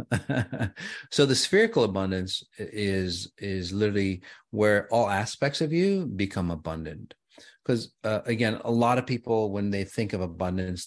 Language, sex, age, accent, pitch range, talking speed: English, male, 30-49, American, 85-105 Hz, 140 wpm